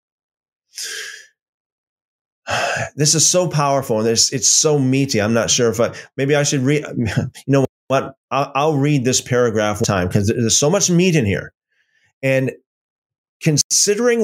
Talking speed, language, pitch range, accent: 150 wpm, English, 115-190 Hz, American